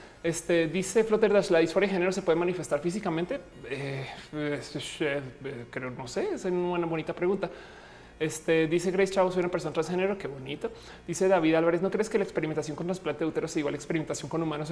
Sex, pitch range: male, 150-185 Hz